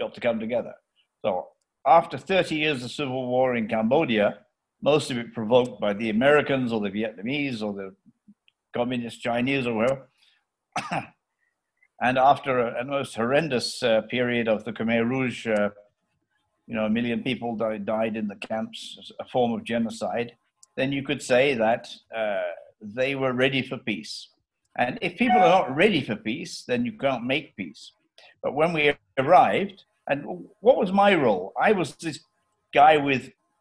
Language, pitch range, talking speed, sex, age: English, 115-145 Hz, 165 wpm, male, 60-79